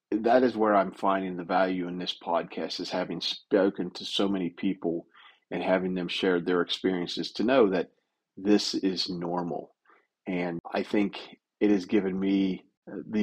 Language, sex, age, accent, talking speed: English, male, 40-59, American, 170 wpm